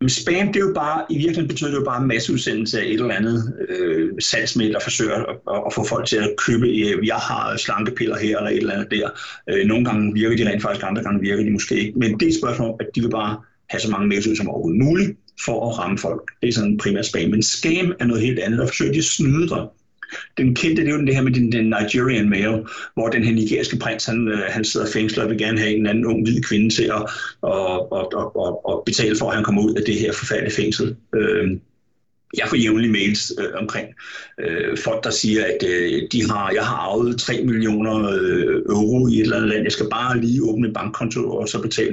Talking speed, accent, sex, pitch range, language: 245 wpm, native, male, 110-155 Hz, Danish